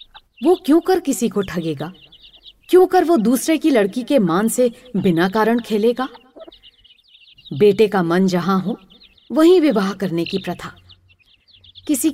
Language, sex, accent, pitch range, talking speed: Hindi, female, native, 170-240 Hz, 145 wpm